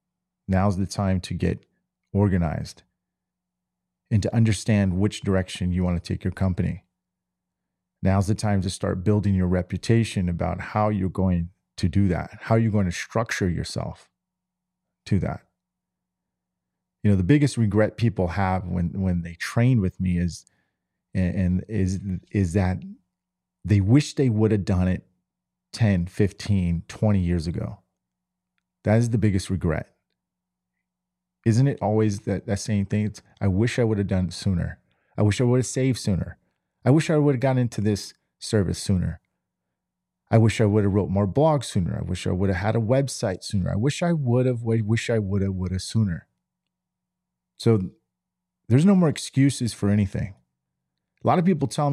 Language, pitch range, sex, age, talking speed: English, 90-115 Hz, male, 40-59, 175 wpm